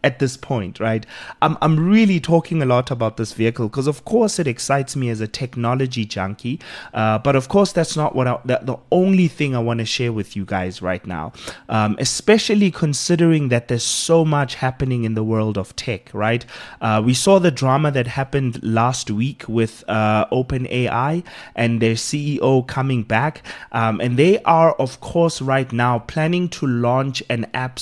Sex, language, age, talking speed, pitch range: male, English, 30-49, 190 wpm, 115-150 Hz